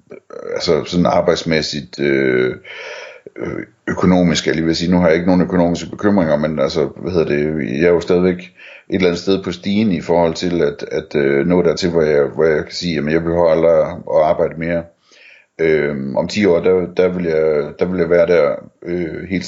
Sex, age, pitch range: male, 60-79, 80-90 Hz